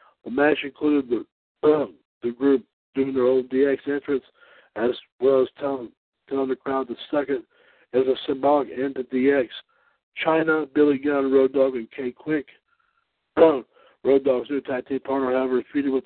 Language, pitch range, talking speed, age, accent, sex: English, 130-145 Hz, 165 wpm, 60-79, American, male